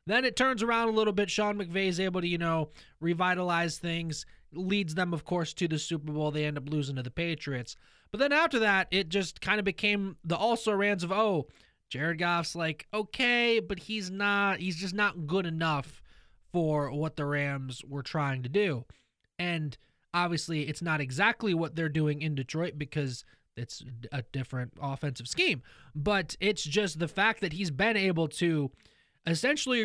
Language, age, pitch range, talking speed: English, 20-39, 150-205 Hz, 185 wpm